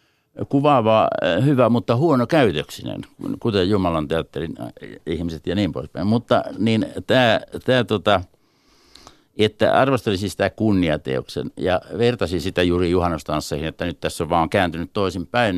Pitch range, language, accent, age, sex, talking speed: 85-110 Hz, Finnish, native, 60-79, male, 135 wpm